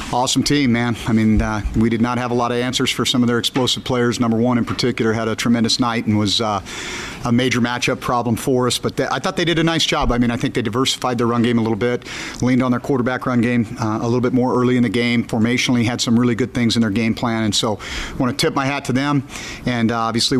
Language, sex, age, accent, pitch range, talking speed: English, male, 50-69, American, 115-130 Hz, 280 wpm